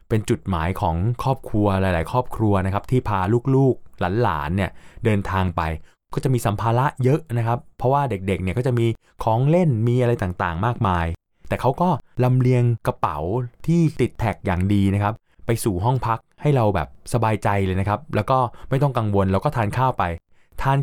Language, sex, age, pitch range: Thai, male, 20-39, 95-120 Hz